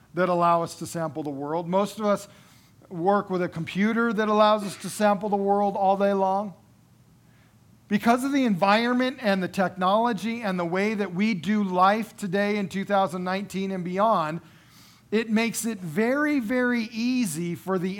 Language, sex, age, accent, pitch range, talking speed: English, male, 50-69, American, 180-220 Hz, 170 wpm